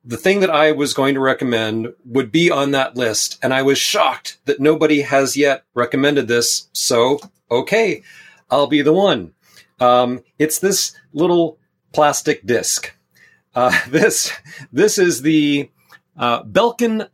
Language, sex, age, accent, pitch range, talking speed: English, male, 40-59, American, 125-155 Hz, 145 wpm